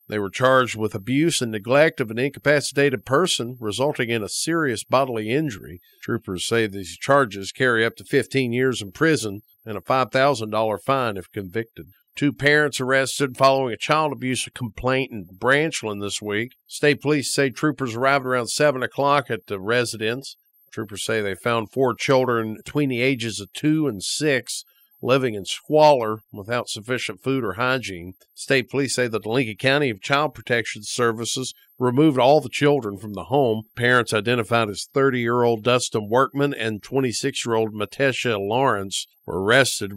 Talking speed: 160 wpm